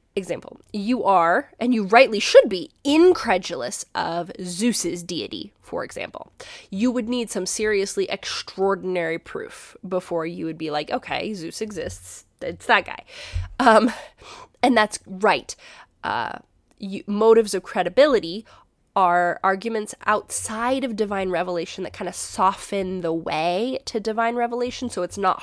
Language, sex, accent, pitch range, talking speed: English, female, American, 180-225 Hz, 135 wpm